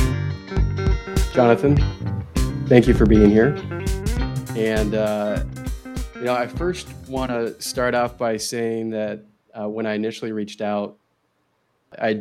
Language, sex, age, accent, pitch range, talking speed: English, male, 20-39, American, 105-120 Hz, 130 wpm